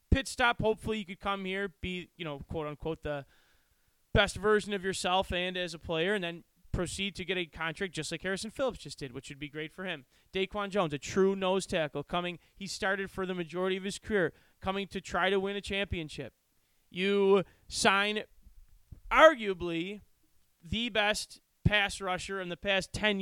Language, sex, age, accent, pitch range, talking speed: English, male, 20-39, American, 170-205 Hz, 185 wpm